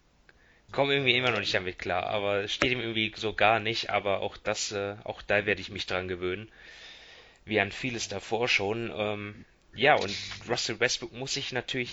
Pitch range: 100-120 Hz